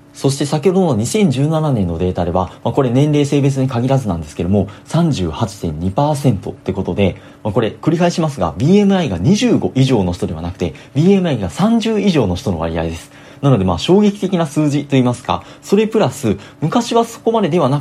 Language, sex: Japanese, male